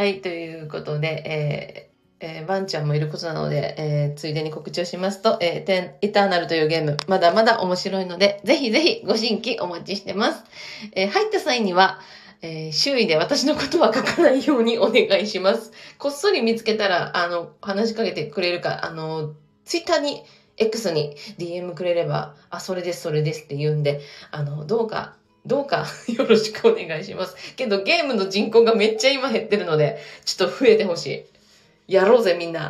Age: 20-39